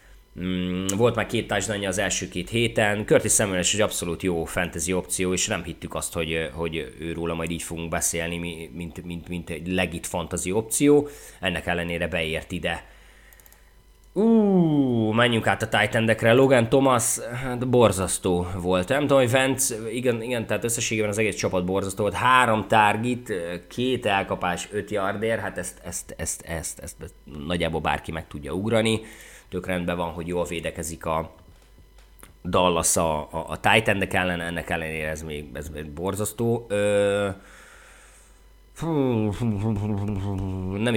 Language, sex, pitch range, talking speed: Hungarian, male, 90-110 Hz, 150 wpm